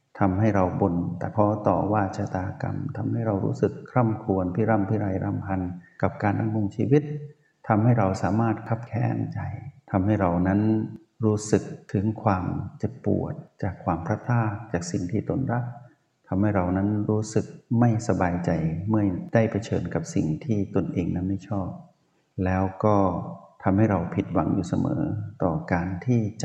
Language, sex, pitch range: Thai, male, 95-115 Hz